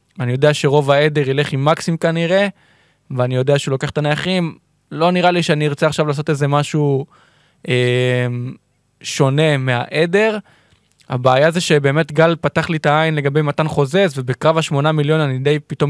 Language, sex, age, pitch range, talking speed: Hebrew, male, 20-39, 130-155 Hz, 160 wpm